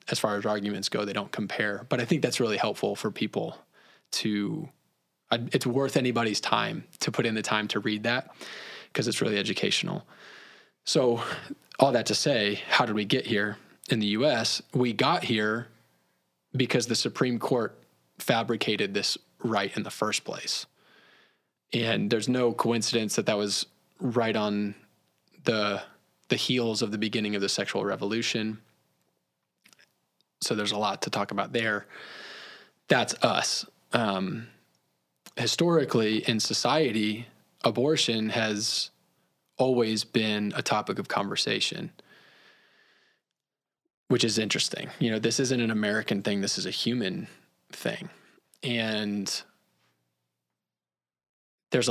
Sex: male